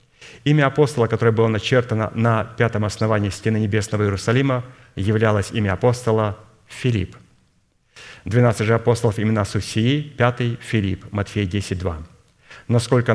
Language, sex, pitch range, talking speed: Russian, male, 105-125 Hz, 125 wpm